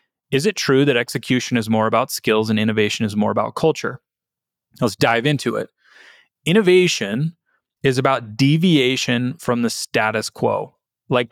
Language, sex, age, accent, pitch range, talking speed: English, male, 30-49, American, 120-155 Hz, 150 wpm